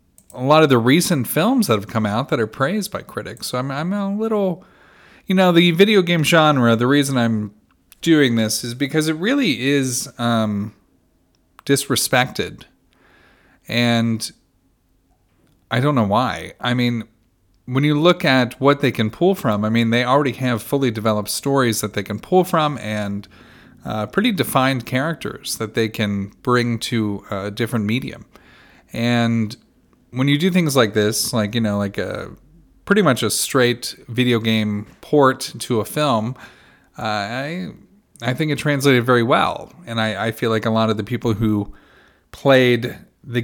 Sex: male